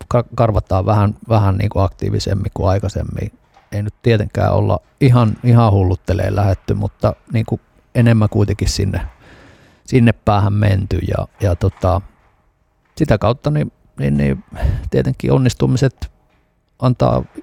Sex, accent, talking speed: male, native, 125 wpm